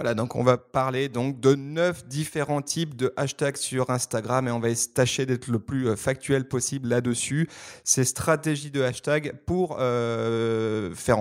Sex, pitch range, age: male, 115-140 Hz, 30-49